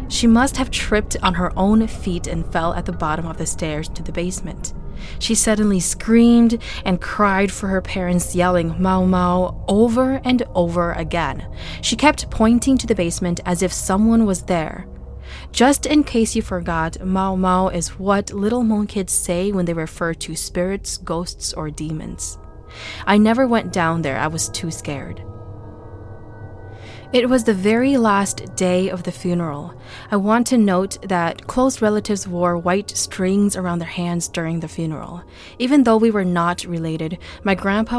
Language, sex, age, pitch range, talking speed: English, female, 20-39, 165-210 Hz, 170 wpm